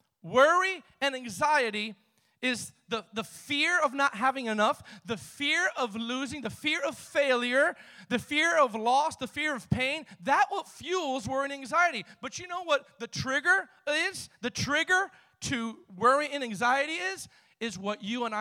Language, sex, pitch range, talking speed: English, male, 220-295 Hz, 165 wpm